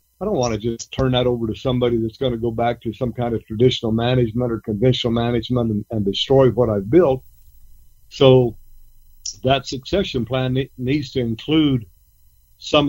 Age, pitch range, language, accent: 50-69, 115-130 Hz, English, American